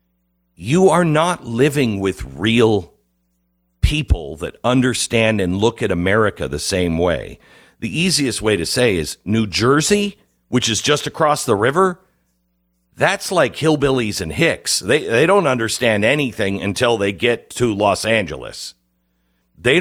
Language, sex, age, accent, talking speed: English, male, 50-69, American, 140 wpm